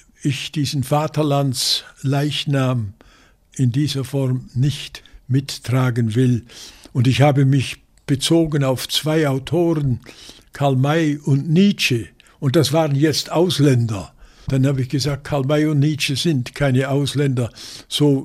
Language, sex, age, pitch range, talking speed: German, male, 60-79, 120-145 Hz, 125 wpm